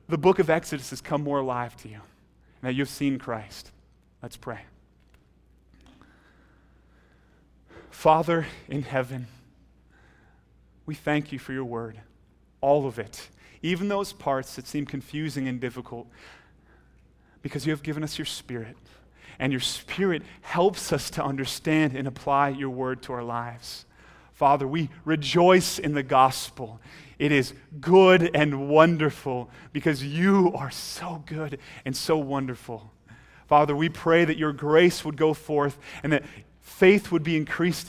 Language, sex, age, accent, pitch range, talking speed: English, male, 30-49, American, 125-160 Hz, 145 wpm